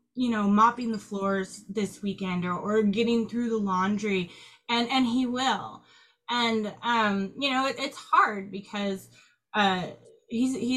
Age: 20-39